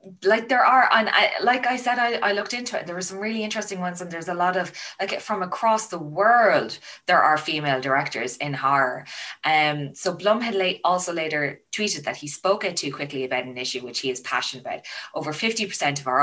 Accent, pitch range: Irish, 140-195 Hz